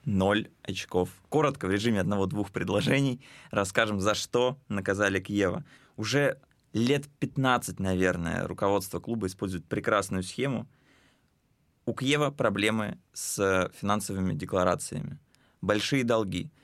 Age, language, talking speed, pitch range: 20-39, Russian, 105 wpm, 95-130 Hz